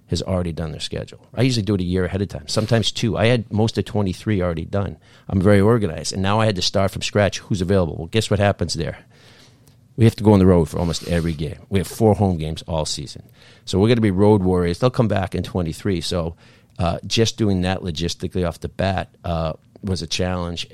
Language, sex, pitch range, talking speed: English, male, 85-105 Hz, 245 wpm